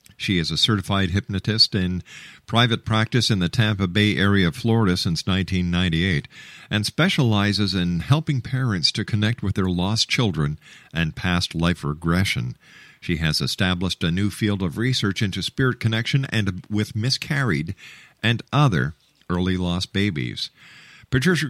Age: 50-69